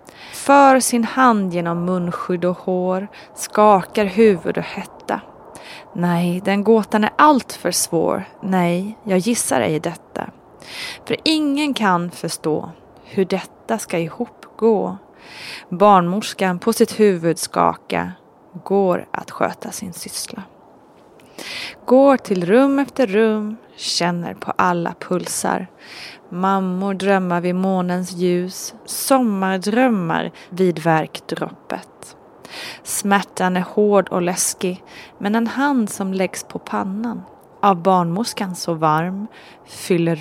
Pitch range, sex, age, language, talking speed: 180-225 Hz, female, 20-39, Swedish, 115 wpm